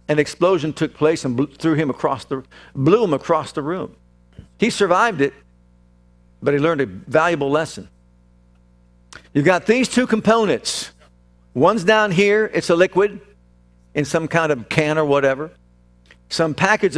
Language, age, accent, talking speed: English, 50-69, American, 140 wpm